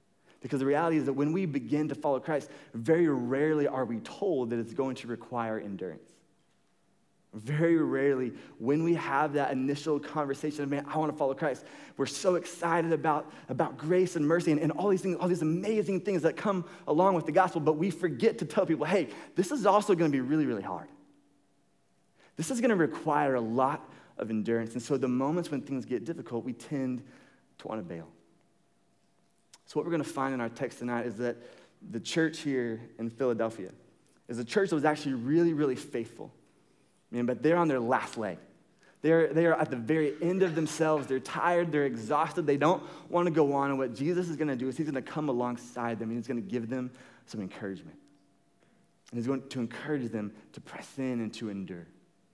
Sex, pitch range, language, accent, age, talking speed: male, 125-165 Hz, English, American, 20-39, 210 wpm